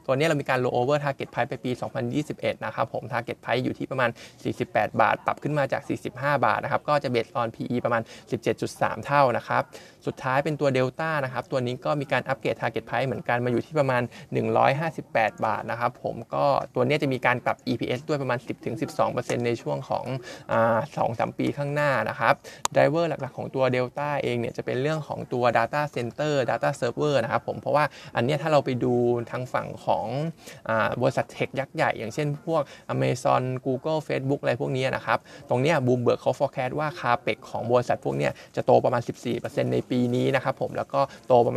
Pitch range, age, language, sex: 120-145 Hz, 20-39, Thai, male